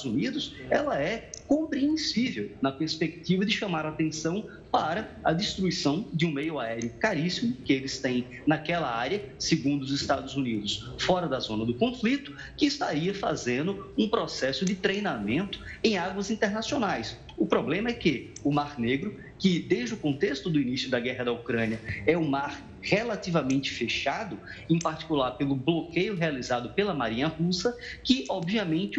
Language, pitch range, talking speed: Portuguese, 140-200 Hz, 150 wpm